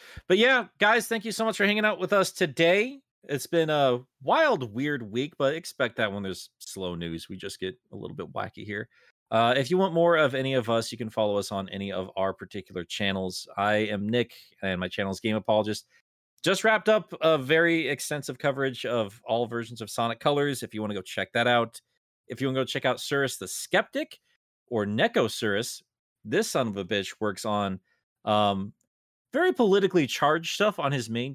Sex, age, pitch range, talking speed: male, 30-49, 105-150 Hz, 210 wpm